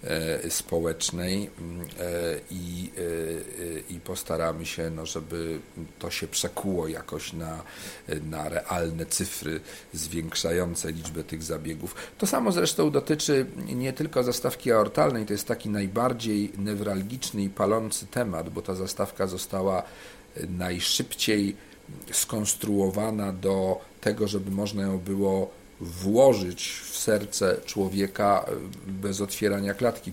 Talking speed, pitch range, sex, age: 105 wpm, 90-105 Hz, male, 50-69